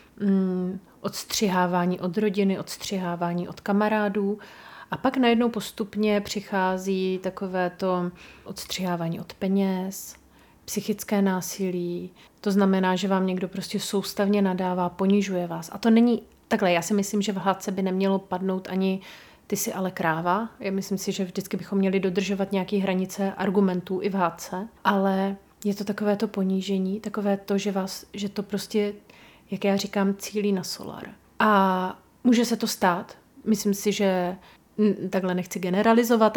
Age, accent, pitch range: 30-49, native, 190-210 Hz